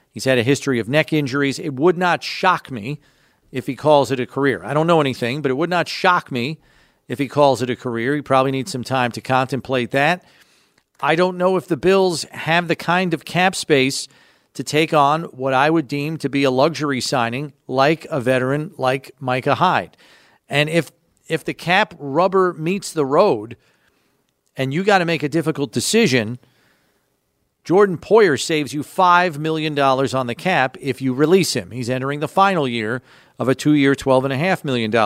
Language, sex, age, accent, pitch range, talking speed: English, male, 40-59, American, 130-165 Hz, 190 wpm